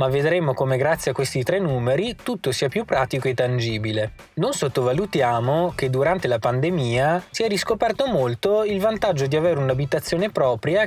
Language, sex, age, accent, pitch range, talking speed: Italian, male, 20-39, native, 125-175 Hz, 165 wpm